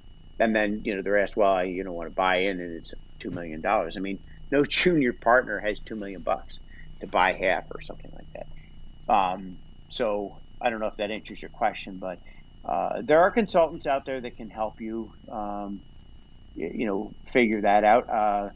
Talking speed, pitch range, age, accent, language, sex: 195 wpm, 95-125 Hz, 50-69, American, English, male